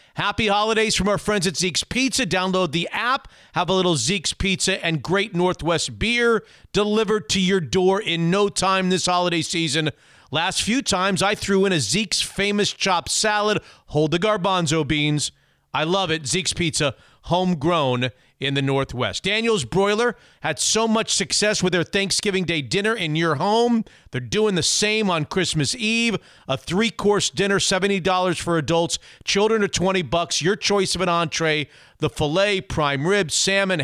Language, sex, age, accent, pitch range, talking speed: English, male, 40-59, American, 155-200 Hz, 170 wpm